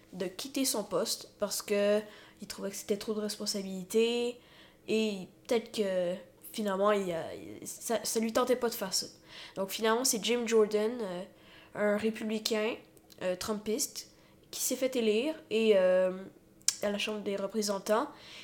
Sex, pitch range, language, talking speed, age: female, 195-225 Hz, French, 150 wpm, 10-29